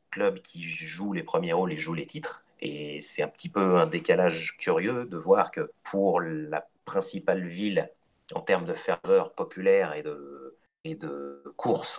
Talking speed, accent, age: 175 wpm, French, 30-49